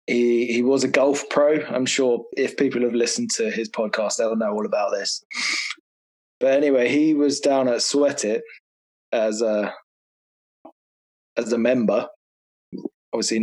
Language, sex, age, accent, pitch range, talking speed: English, male, 20-39, British, 115-145 Hz, 150 wpm